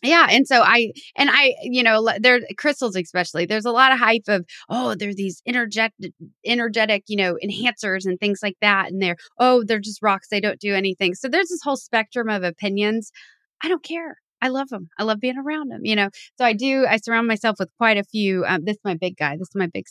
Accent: American